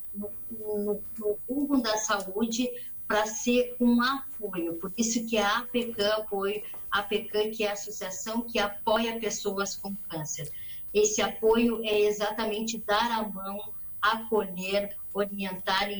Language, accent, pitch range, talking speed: Portuguese, Brazilian, 195-220 Hz, 135 wpm